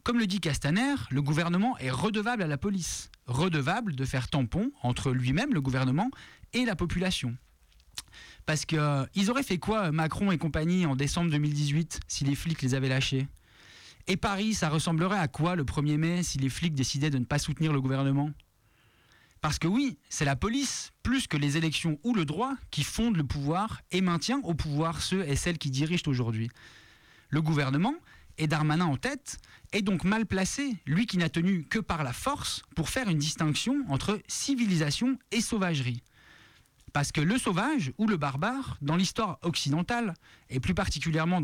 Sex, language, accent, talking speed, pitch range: male, French, French, 180 wpm, 140-200 Hz